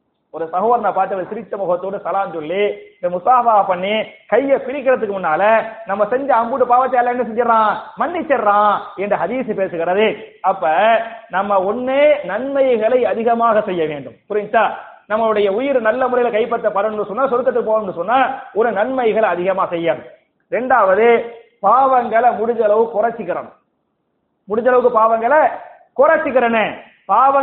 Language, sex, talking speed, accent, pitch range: English, male, 80 wpm, Indian, 210-260 Hz